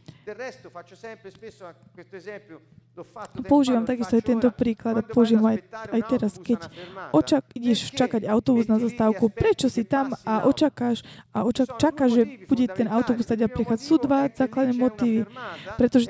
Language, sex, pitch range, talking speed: Slovak, female, 220-260 Hz, 140 wpm